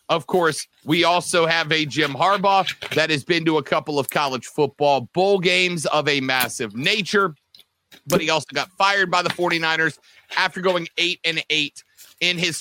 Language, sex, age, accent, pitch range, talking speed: English, male, 40-59, American, 155-200 Hz, 185 wpm